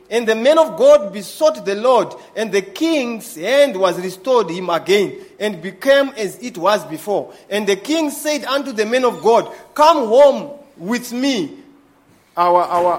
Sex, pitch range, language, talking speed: male, 200-295 Hz, English, 170 wpm